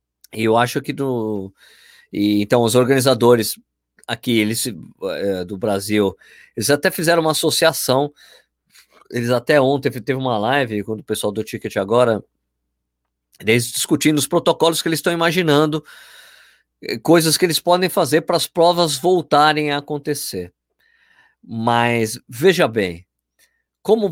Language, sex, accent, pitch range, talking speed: Portuguese, male, Brazilian, 120-155 Hz, 135 wpm